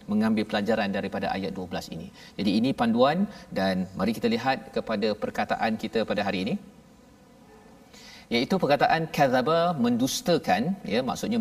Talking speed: 130 wpm